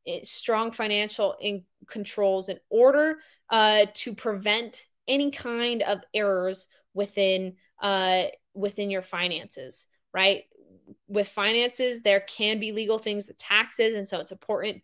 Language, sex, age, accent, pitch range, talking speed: English, female, 20-39, American, 195-230 Hz, 120 wpm